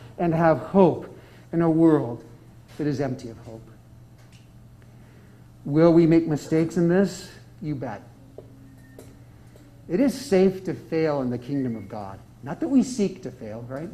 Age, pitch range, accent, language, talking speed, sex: 50-69, 140-185 Hz, American, English, 155 wpm, male